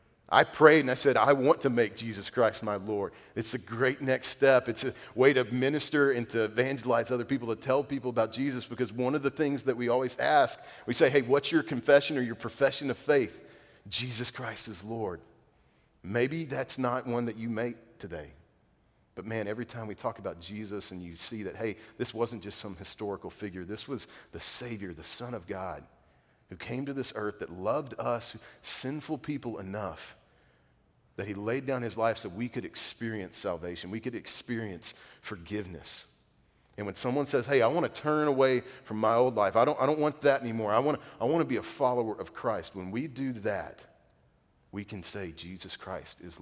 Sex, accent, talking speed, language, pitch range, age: male, American, 205 wpm, English, 105-135 Hz, 40-59